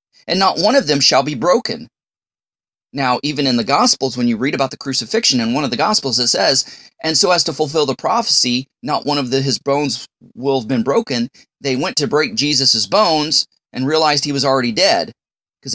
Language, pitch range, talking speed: English, 135-200 Hz, 215 wpm